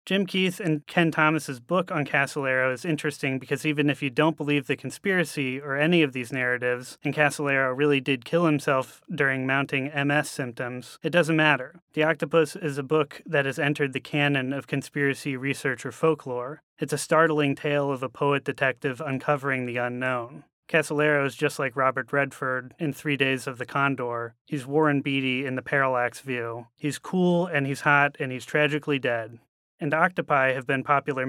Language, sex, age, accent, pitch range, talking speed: English, male, 30-49, American, 130-150 Hz, 180 wpm